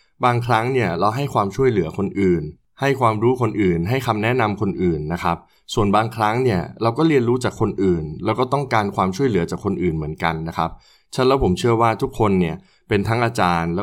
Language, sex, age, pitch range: Thai, male, 20-39, 90-120 Hz